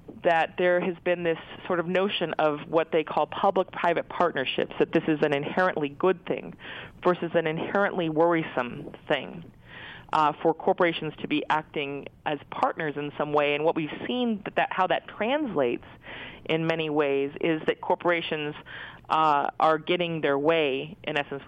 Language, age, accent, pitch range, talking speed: English, 30-49, American, 145-180 Hz, 165 wpm